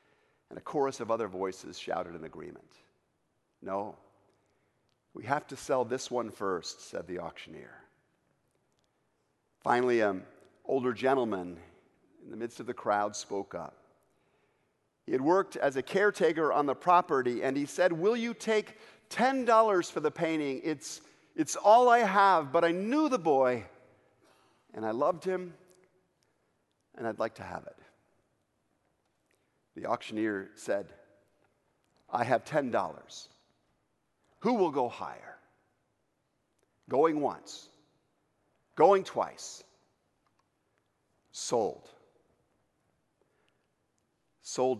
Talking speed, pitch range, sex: 115 wpm, 110-185 Hz, male